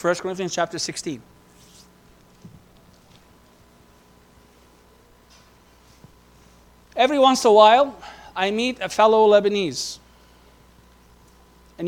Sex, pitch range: male, 155-215 Hz